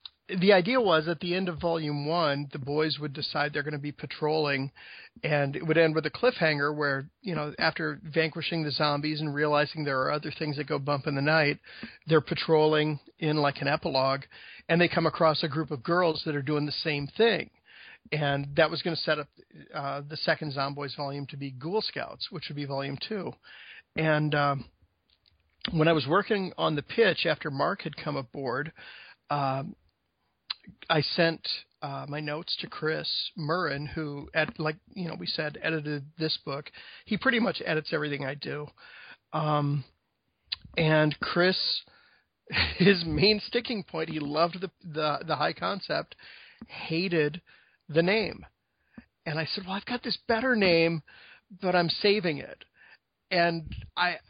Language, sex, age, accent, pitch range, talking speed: English, male, 40-59, American, 145-170 Hz, 175 wpm